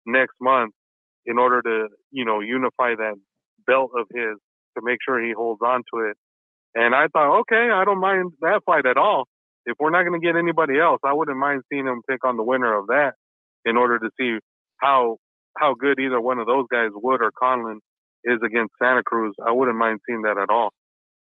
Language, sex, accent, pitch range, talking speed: English, male, American, 120-150 Hz, 215 wpm